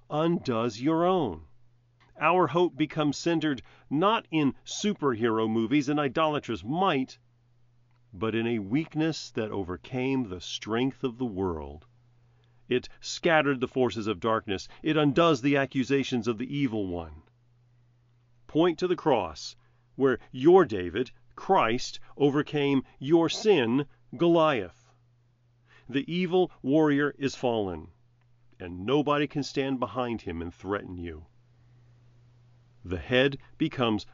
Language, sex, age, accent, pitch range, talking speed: English, male, 40-59, American, 120-150 Hz, 120 wpm